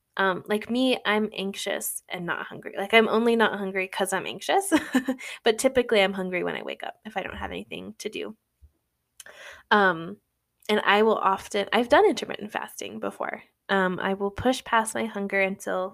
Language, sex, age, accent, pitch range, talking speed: English, female, 20-39, American, 190-245 Hz, 185 wpm